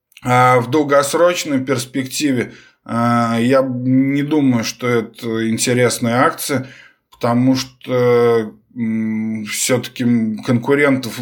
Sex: male